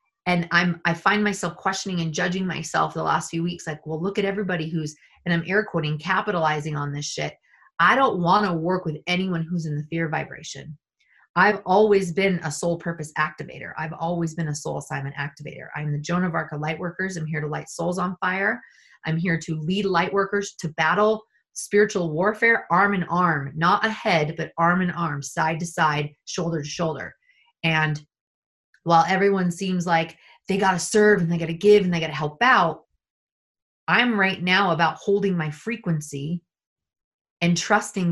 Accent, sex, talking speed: American, female, 190 wpm